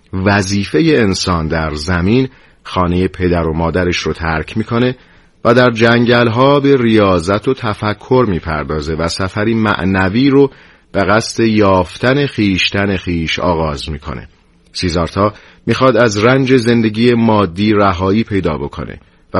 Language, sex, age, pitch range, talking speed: Persian, male, 40-59, 90-120 Hz, 135 wpm